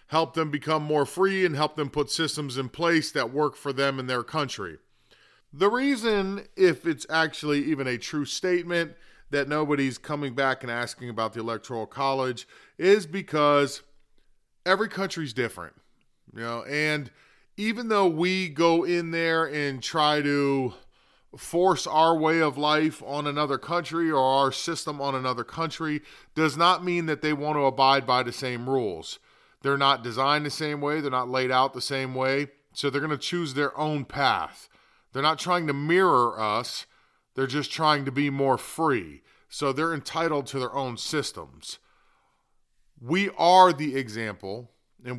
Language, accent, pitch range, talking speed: English, American, 135-165 Hz, 170 wpm